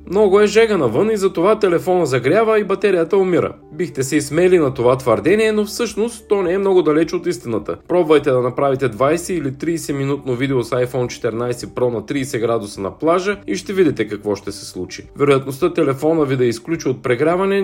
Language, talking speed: Bulgarian, 195 wpm